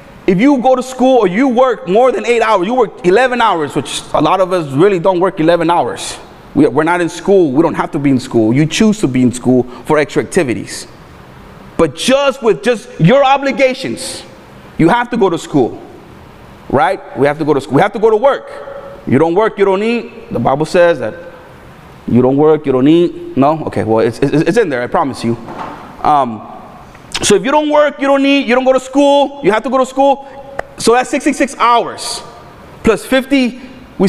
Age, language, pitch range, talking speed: 30-49, English, 170-270 Hz, 220 wpm